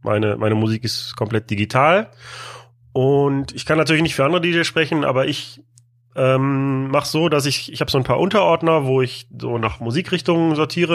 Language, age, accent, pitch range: German, 30-49, German, 120-145 Hz